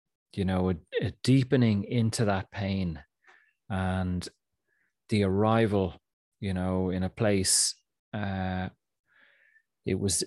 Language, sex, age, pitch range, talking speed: English, male, 30-49, 95-110 Hz, 110 wpm